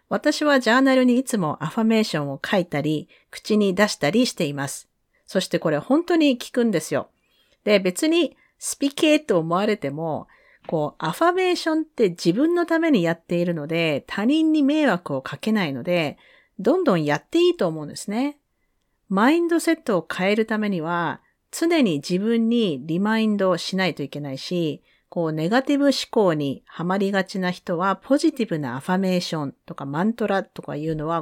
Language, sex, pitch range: Japanese, female, 165-250 Hz